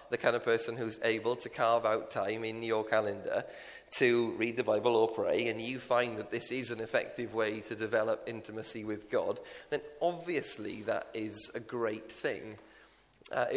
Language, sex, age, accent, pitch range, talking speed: English, male, 30-49, British, 110-130 Hz, 180 wpm